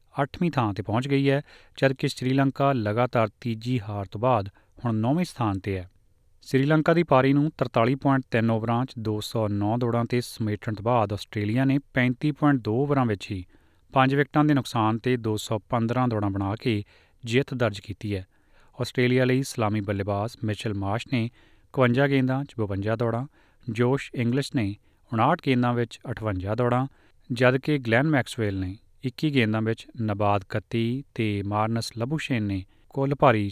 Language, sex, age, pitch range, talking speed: Punjabi, male, 30-49, 105-130 Hz, 145 wpm